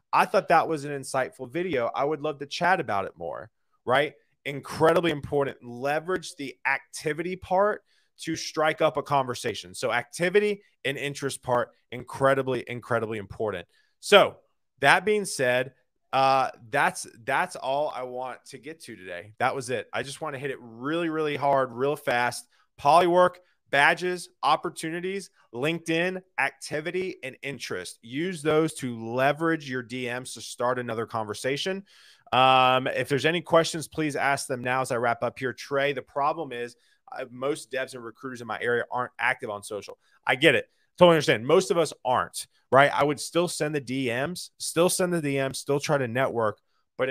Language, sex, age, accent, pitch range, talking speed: English, male, 30-49, American, 125-165 Hz, 170 wpm